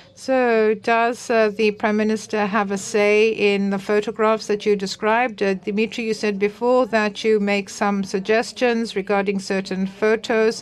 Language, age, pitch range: Greek, 60-79, 205-230 Hz